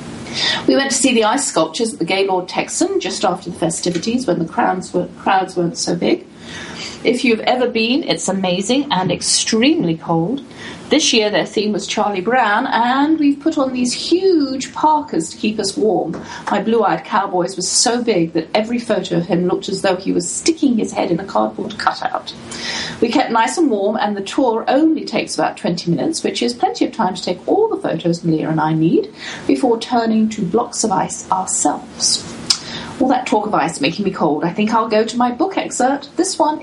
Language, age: English, 40-59